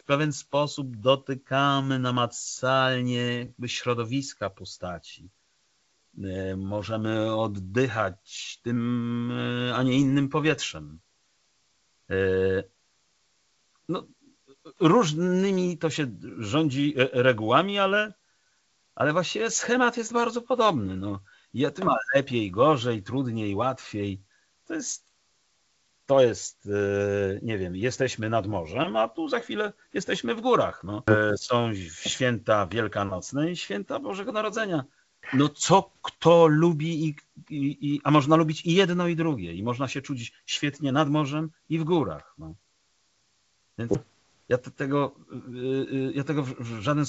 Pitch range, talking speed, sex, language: 105-150 Hz, 105 wpm, male, Polish